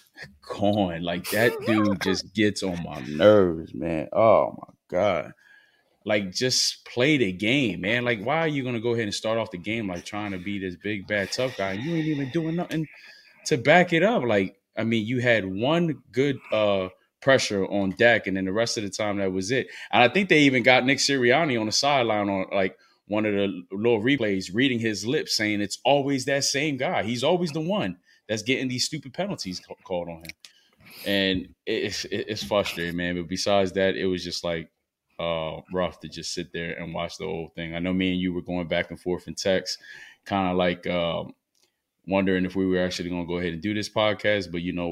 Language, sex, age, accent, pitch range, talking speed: English, male, 20-39, American, 90-120 Hz, 220 wpm